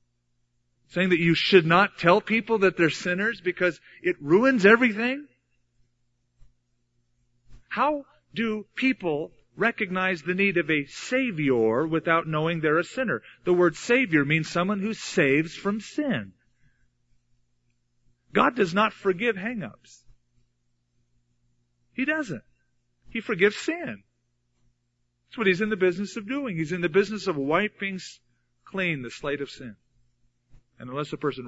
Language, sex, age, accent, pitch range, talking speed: English, male, 40-59, American, 120-180 Hz, 135 wpm